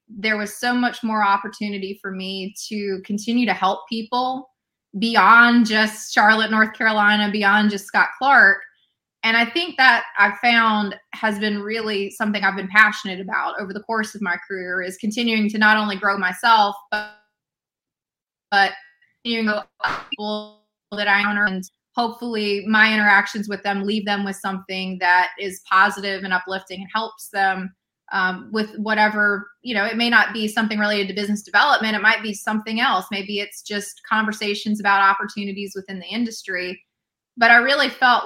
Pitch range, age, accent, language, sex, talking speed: 195-220 Hz, 20-39, American, English, female, 170 wpm